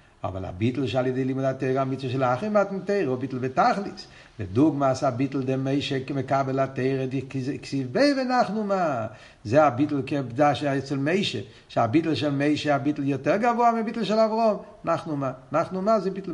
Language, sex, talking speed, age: Hebrew, male, 160 wpm, 50-69